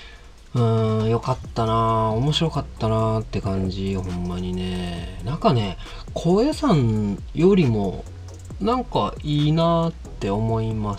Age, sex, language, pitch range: 40-59, male, Japanese, 95-135 Hz